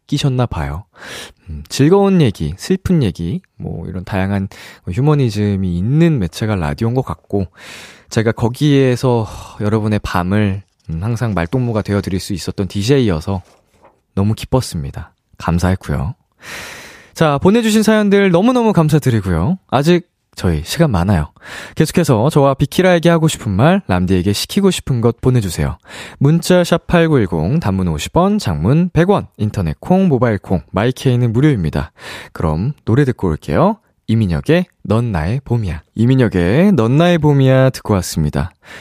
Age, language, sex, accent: 20-39, Korean, male, native